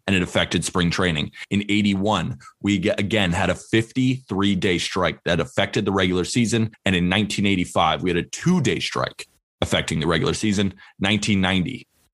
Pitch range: 90-120 Hz